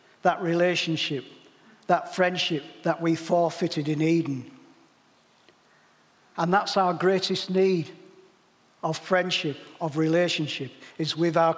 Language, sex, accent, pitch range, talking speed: English, male, British, 160-185 Hz, 110 wpm